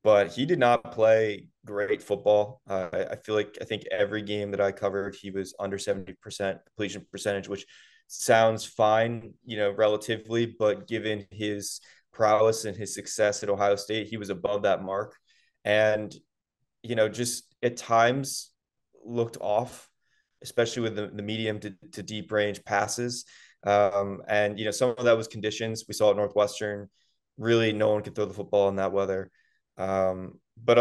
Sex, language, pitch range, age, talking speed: male, English, 100-115 Hz, 20-39, 175 wpm